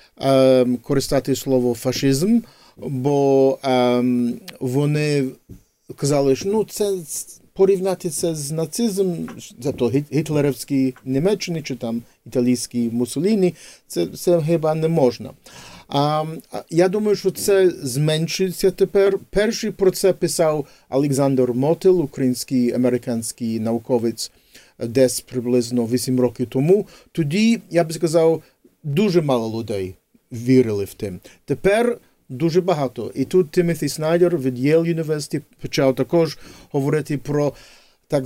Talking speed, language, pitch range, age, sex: 110 wpm, Ukrainian, 125-175 Hz, 40-59, male